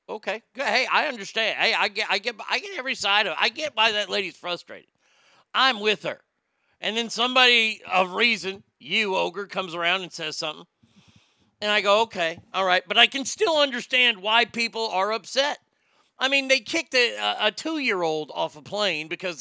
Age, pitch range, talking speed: 40-59, 175-230 Hz, 190 wpm